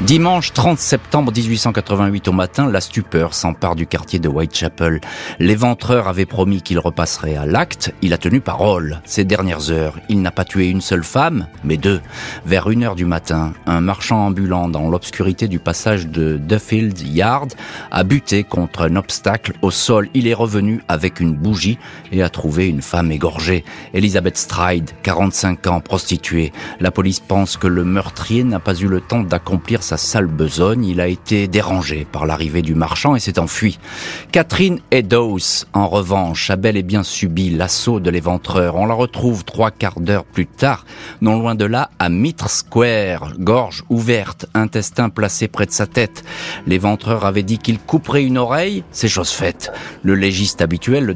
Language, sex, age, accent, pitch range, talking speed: French, male, 40-59, French, 85-110 Hz, 175 wpm